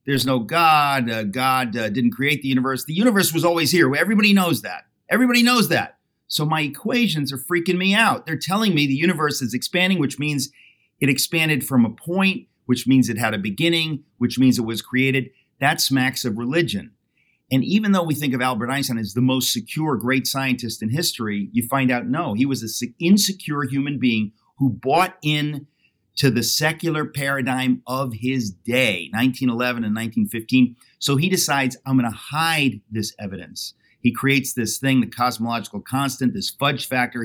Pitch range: 120-150 Hz